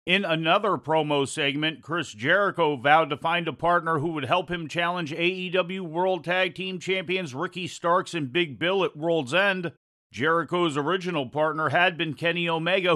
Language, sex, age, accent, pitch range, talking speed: English, male, 40-59, American, 145-170 Hz, 165 wpm